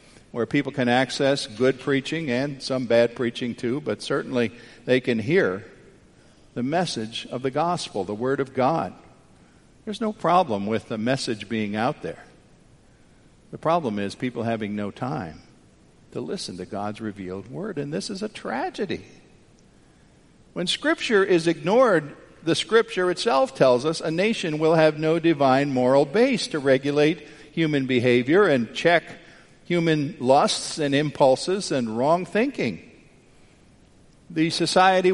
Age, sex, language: 50-69, male, English